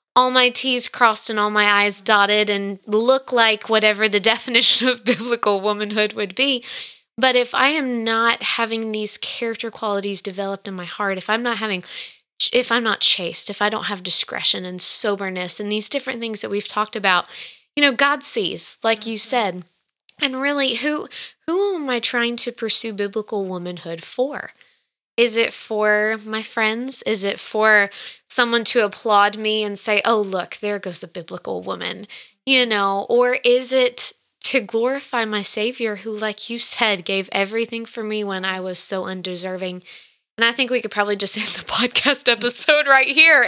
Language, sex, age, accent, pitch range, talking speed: English, female, 20-39, American, 205-245 Hz, 180 wpm